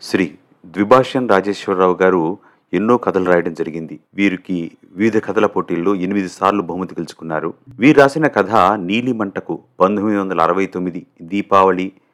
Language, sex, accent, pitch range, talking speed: Telugu, male, native, 90-105 Hz, 130 wpm